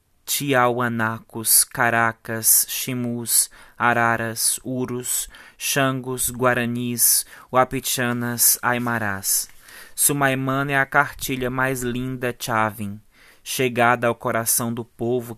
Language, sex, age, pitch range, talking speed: Portuguese, male, 20-39, 110-125 Hz, 80 wpm